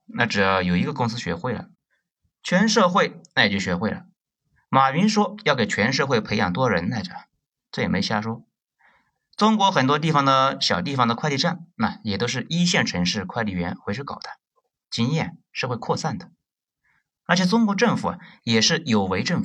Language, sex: Chinese, male